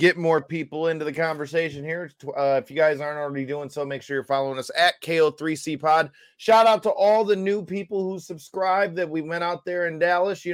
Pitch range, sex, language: 125-165 Hz, male, English